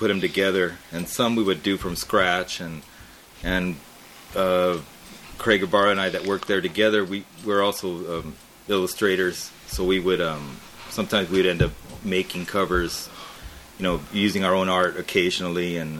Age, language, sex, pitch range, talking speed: 30-49, English, male, 85-100 Hz, 160 wpm